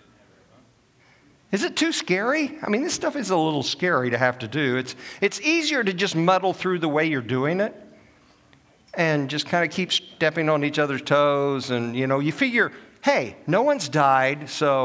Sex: male